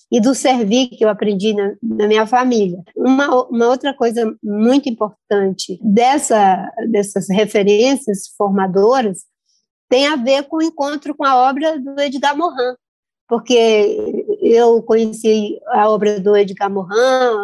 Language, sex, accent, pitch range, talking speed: Portuguese, female, Brazilian, 210-255 Hz, 140 wpm